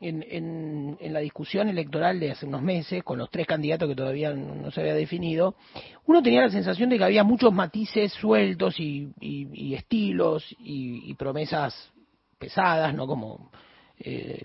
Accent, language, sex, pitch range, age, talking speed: Argentinian, Spanish, male, 155-225 Hz, 40-59, 170 wpm